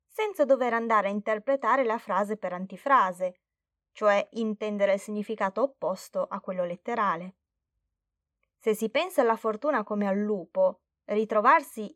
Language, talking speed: Italian, 130 wpm